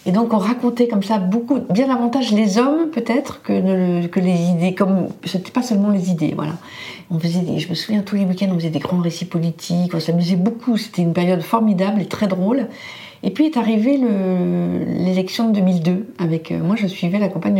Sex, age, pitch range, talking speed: female, 50-69, 170-225 Hz, 215 wpm